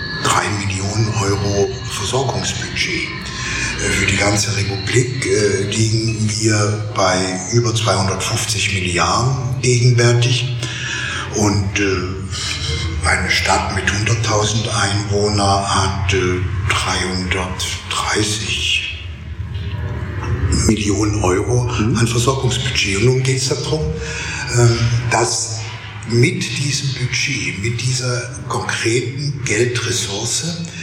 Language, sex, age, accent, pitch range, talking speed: German, male, 60-79, German, 100-120 Hz, 75 wpm